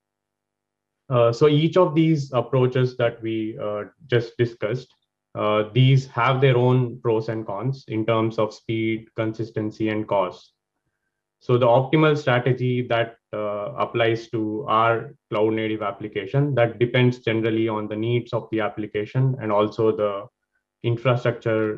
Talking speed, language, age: 140 wpm, English, 20-39